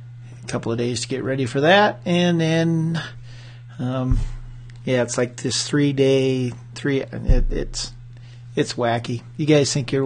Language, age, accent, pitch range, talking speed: English, 30-49, American, 120-140 Hz, 155 wpm